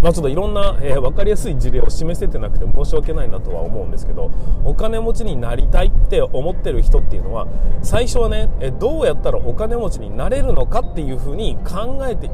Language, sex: Japanese, male